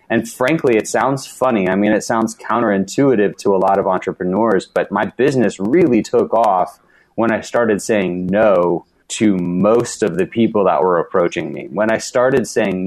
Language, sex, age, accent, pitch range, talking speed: English, male, 30-49, American, 95-120 Hz, 180 wpm